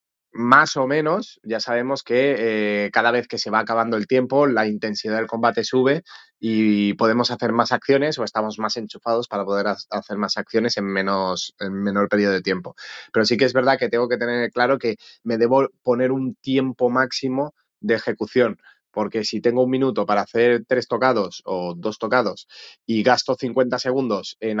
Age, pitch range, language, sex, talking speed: 20-39, 105-125 Hz, Spanish, male, 190 wpm